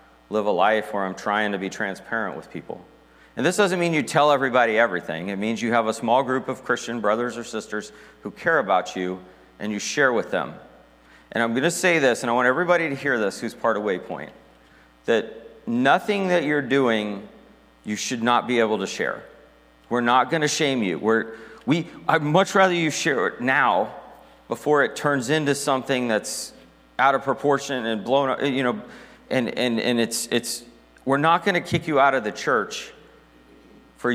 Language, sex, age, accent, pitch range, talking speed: English, male, 30-49, American, 95-135 Hz, 200 wpm